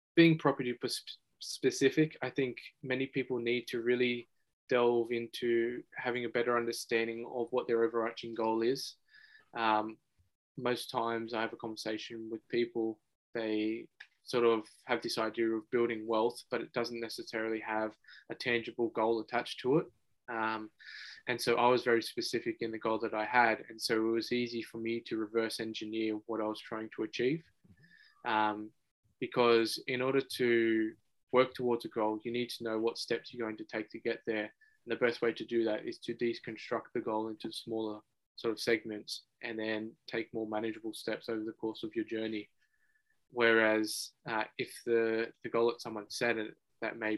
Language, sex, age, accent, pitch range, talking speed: English, male, 20-39, Australian, 110-120 Hz, 180 wpm